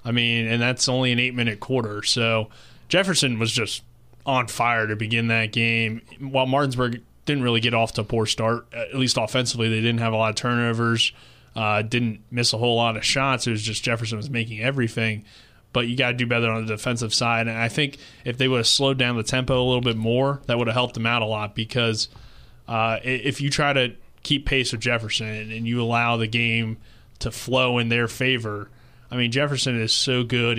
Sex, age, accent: male, 20-39, American